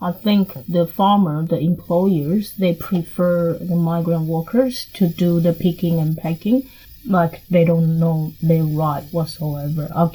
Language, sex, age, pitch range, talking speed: English, female, 20-39, 165-185 Hz, 150 wpm